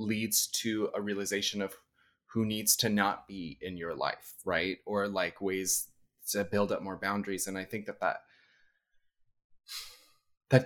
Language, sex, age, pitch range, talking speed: English, male, 20-39, 100-115 Hz, 160 wpm